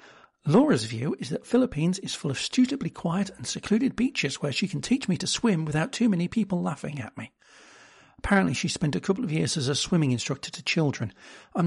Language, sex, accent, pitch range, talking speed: English, male, British, 135-200 Hz, 210 wpm